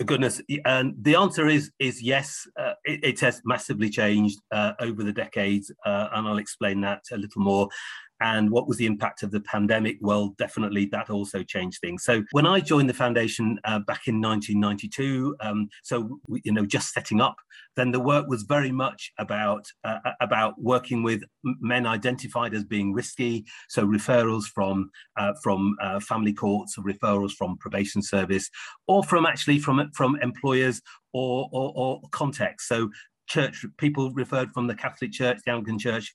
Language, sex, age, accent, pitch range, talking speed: English, male, 40-59, British, 105-130 Hz, 180 wpm